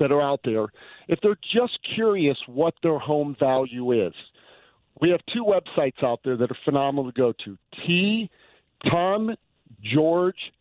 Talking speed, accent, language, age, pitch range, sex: 155 wpm, American, English, 50-69, 130-170 Hz, male